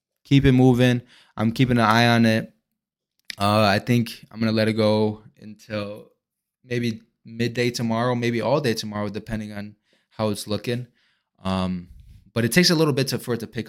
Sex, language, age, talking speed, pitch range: male, English, 20-39, 185 wpm, 100-120 Hz